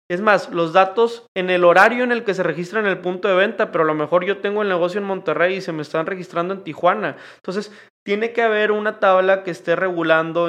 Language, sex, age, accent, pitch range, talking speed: Spanish, male, 20-39, Mexican, 165-190 Hz, 245 wpm